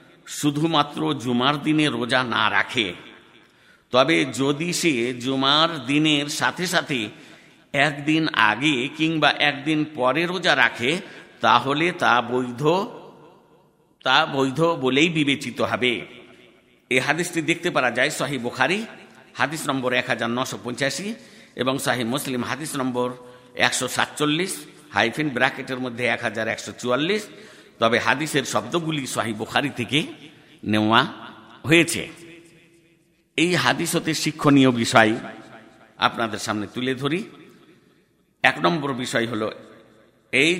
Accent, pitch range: native, 120-160 Hz